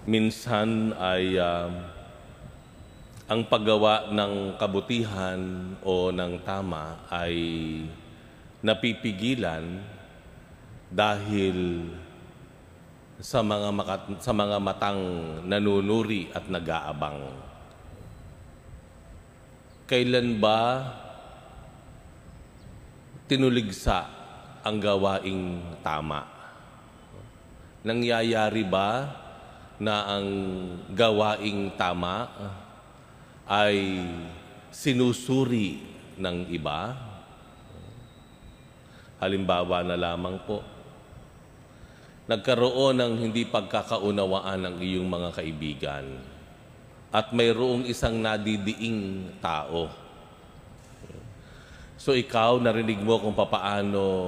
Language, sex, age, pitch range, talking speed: Filipino, male, 40-59, 85-110 Hz, 65 wpm